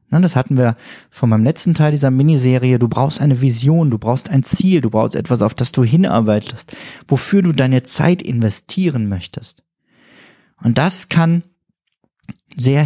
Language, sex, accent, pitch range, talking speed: German, male, German, 125-165 Hz, 160 wpm